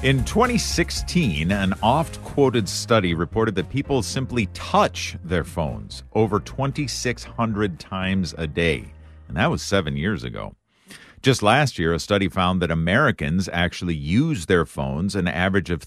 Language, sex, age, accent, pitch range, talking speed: English, male, 50-69, American, 80-110 Hz, 145 wpm